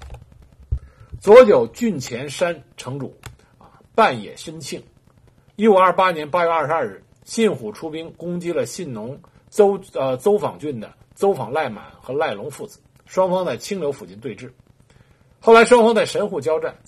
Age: 60-79